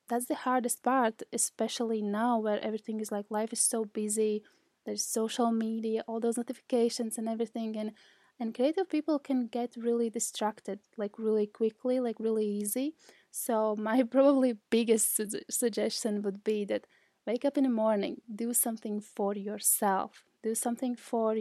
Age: 20-39